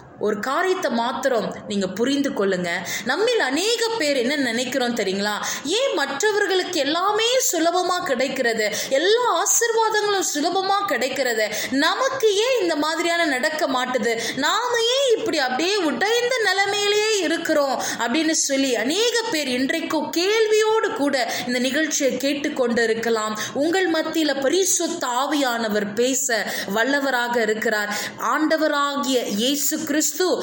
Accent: native